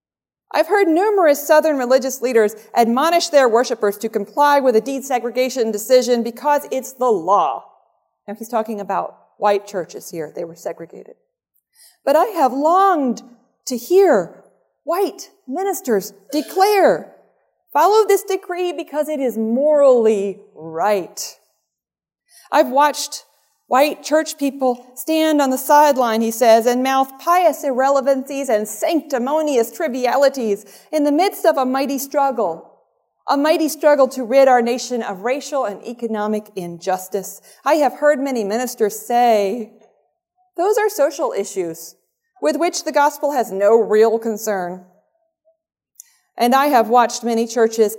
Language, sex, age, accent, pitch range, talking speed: English, female, 40-59, American, 220-300 Hz, 135 wpm